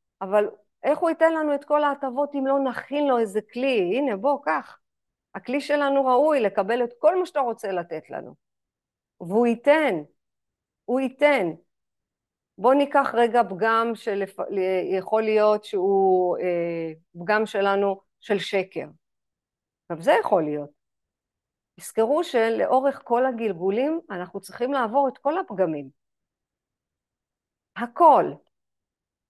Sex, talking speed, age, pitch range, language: female, 120 wpm, 50-69, 185-255 Hz, Hebrew